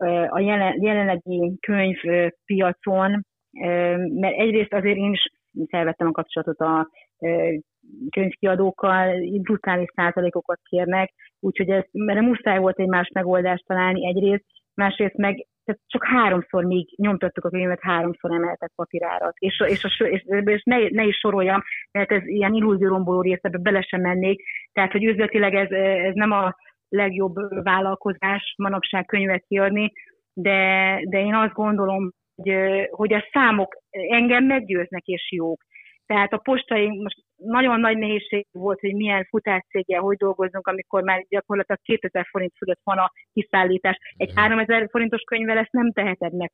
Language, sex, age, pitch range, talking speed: Hungarian, female, 30-49, 185-210 Hz, 145 wpm